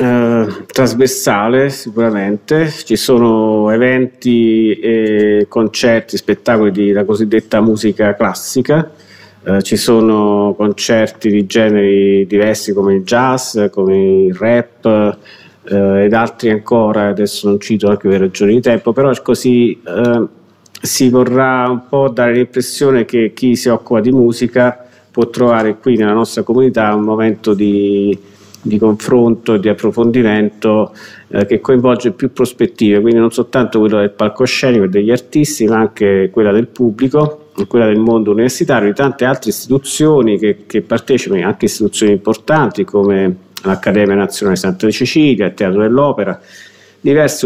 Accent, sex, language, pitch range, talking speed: native, male, Italian, 105-125 Hz, 140 wpm